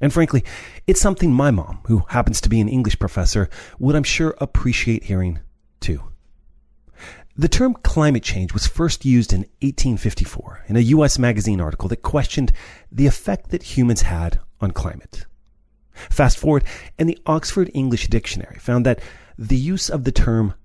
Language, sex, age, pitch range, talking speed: English, male, 30-49, 90-140 Hz, 165 wpm